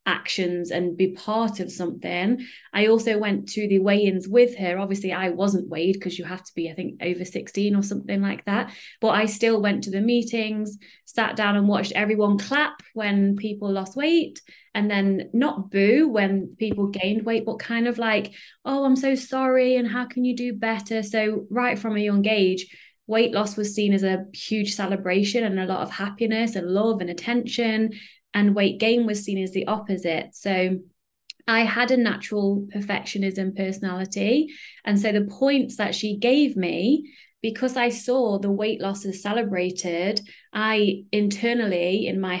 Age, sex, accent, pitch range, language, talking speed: 20-39, female, British, 195-230 Hz, English, 180 wpm